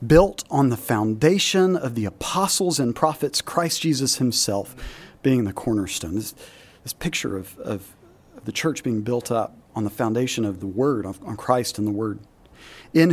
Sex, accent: male, American